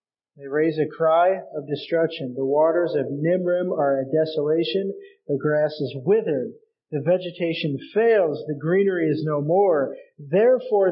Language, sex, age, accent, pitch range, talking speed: English, male, 40-59, American, 150-200 Hz, 145 wpm